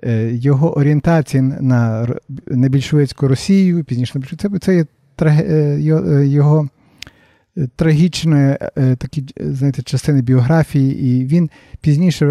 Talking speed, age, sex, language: 95 wpm, 50-69, male, Ukrainian